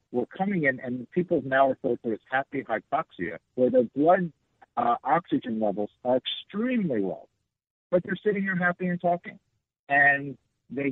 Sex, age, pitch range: male, 60-79, 120-160 Hz